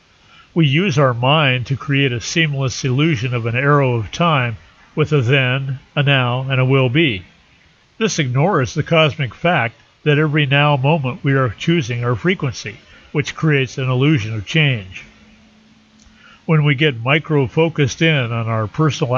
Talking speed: 155 wpm